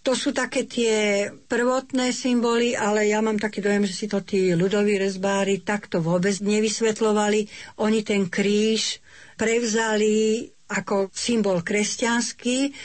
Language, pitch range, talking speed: Slovak, 200-230 Hz, 125 wpm